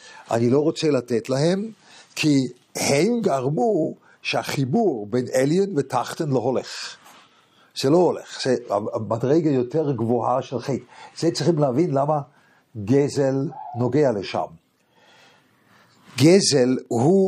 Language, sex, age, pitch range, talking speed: English, male, 60-79, 125-165 Hz, 110 wpm